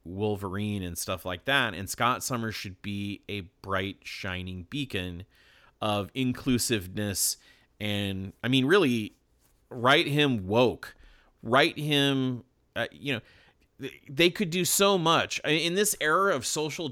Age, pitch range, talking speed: 30-49, 95-125 Hz, 135 wpm